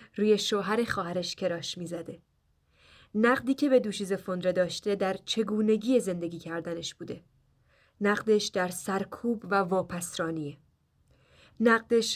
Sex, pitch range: female, 180-230 Hz